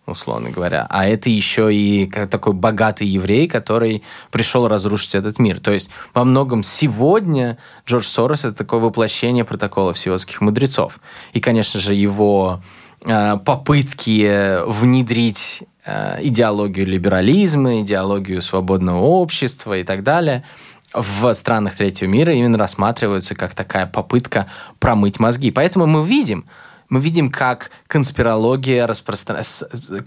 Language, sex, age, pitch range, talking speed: Russian, male, 20-39, 105-135 Hz, 120 wpm